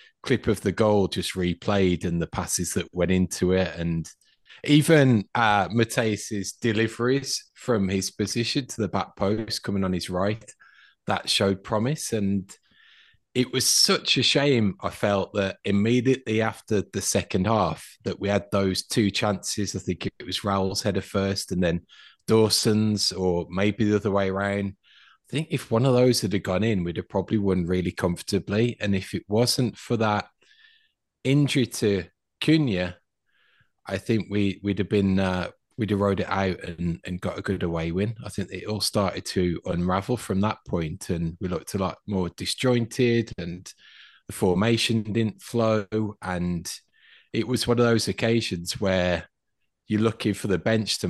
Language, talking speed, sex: English, 175 wpm, male